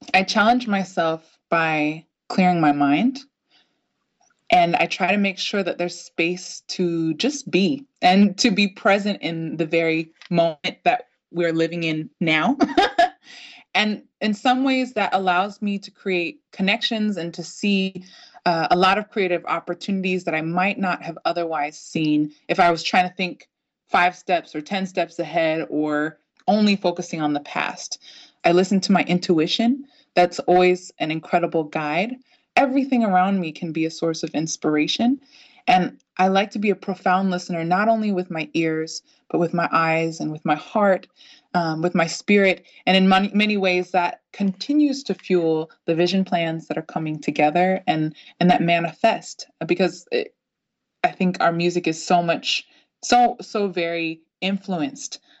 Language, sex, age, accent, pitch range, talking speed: English, female, 20-39, American, 165-205 Hz, 165 wpm